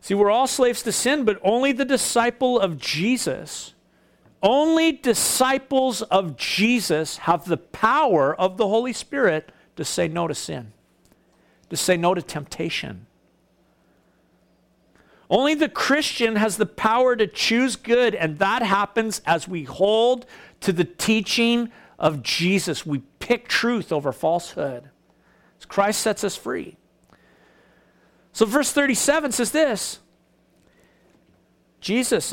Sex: male